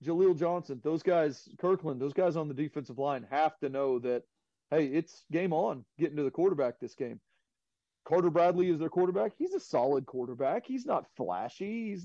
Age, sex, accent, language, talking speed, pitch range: 40-59, male, American, English, 190 wpm, 135-165 Hz